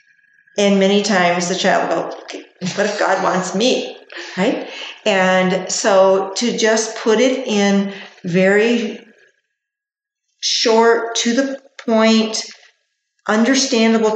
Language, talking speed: English, 115 wpm